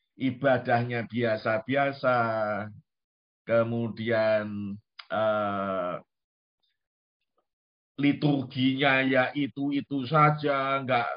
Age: 50-69